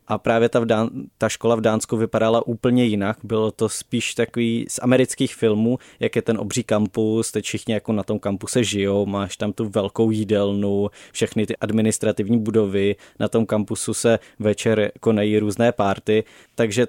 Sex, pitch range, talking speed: male, 105-115 Hz, 165 wpm